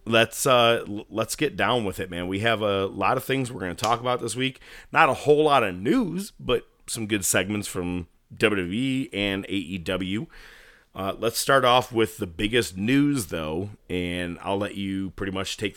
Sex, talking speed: male, 200 wpm